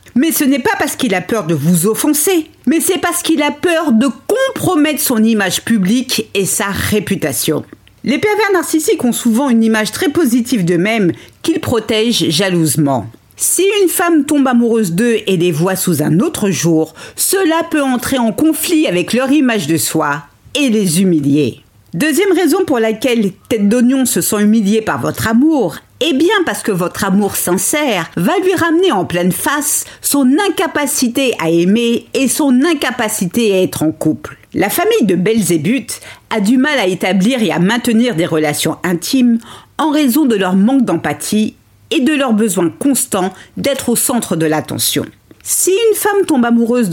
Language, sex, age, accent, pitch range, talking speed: French, female, 50-69, French, 185-285 Hz, 175 wpm